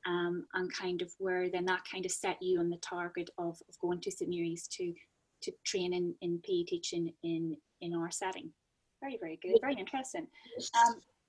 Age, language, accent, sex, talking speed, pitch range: 10-29, English, British, female, 195 wpm, 175-245 Hz